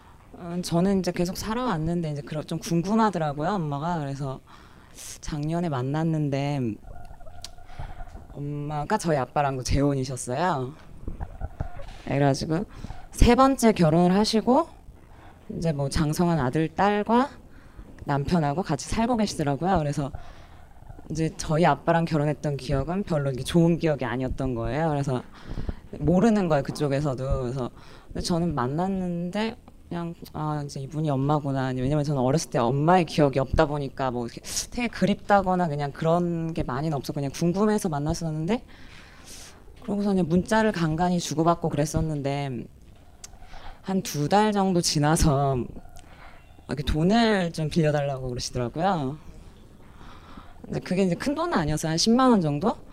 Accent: native